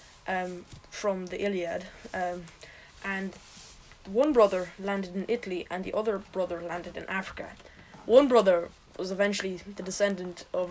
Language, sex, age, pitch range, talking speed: English, female, 20-39, 180-215 Hz, 140 wpm